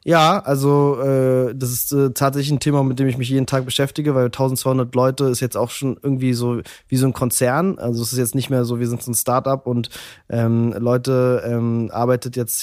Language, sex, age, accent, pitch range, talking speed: German, male, 20-39, German, 115-130 Hz, 225 wpm